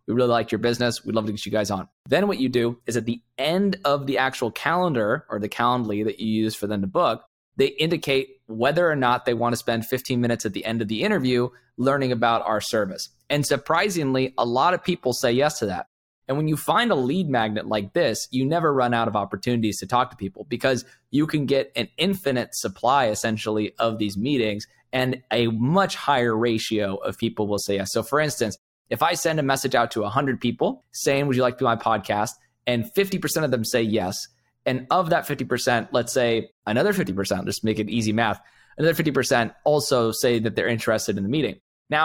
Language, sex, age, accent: English, male, 20-39, American